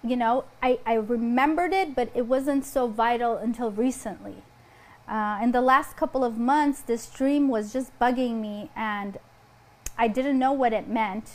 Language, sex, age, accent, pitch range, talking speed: English, female, 30-49, American, 215-255 Hz, 175 wpm